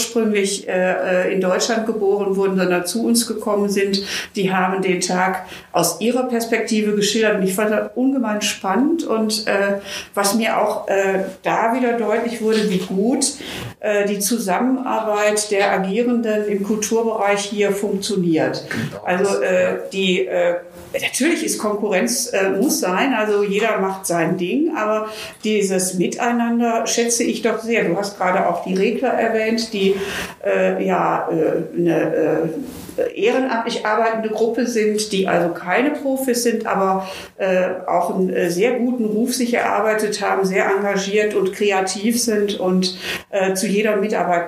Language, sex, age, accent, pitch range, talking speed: German, female, 50-69, German, 190-230 Hz, 150 wpm